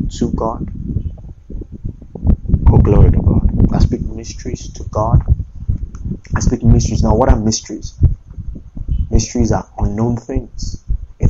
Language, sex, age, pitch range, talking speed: English, male, 30-49, 90-115 Hz, 120 wpm